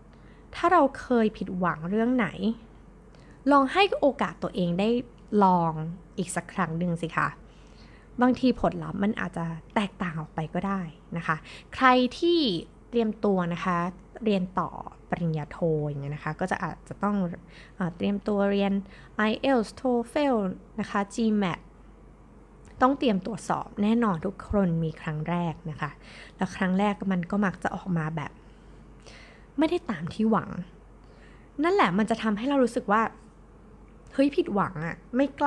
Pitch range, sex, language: 180-245 Hz, female, Thai